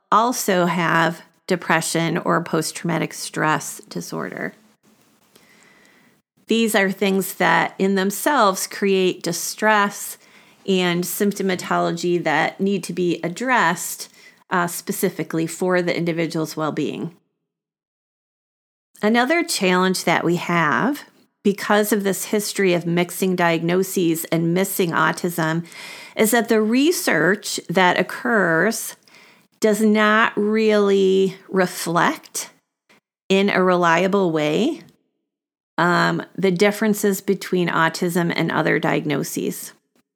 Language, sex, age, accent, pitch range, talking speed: English, female, 40-59, American, 175-210 Hz, 100 wpm